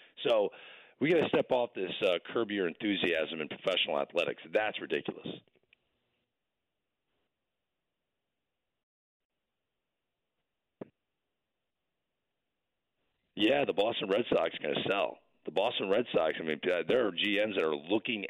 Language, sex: English, male